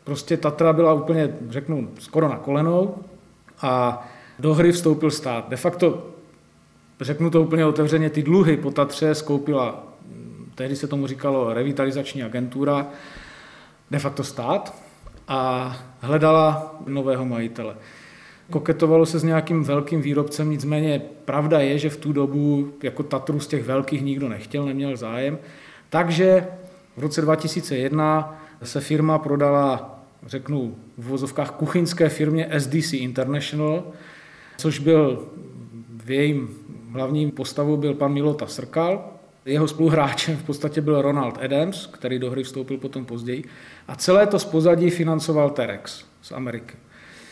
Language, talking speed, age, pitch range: Czech, 135 wpm, 40-59, 135-160 Hz